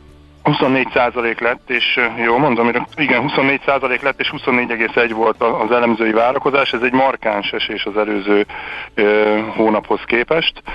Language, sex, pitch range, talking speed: Hungarian, male, 100-120 Hz, 135 wpm